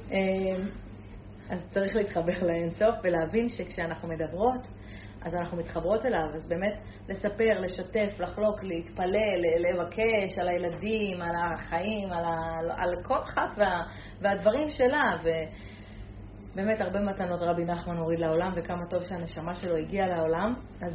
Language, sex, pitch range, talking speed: Hebrew, female, 170-220 Hz, 120 wpm